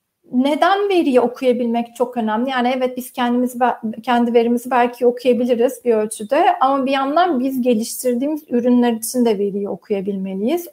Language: Turkish